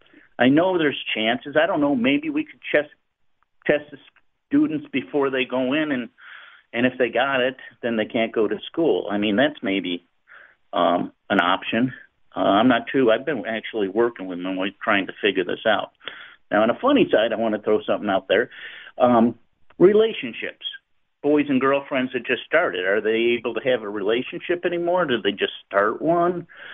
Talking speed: 190 wpm